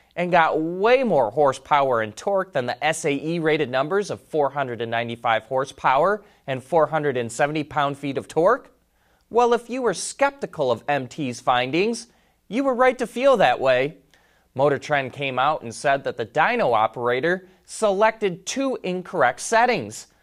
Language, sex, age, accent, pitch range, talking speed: English, male, 30-49, American, 135-205 Hz, 140 wpm